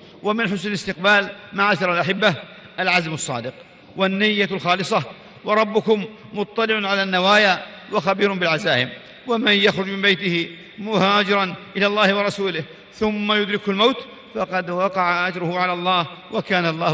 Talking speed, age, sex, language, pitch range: 115 wpm, 40-59, male, Arabic, 180-215 Hz